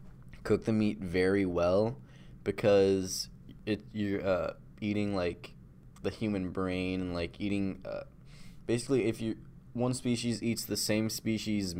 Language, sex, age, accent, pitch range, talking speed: English, male, 20-39, American, 90-105 Hz, 135 wpm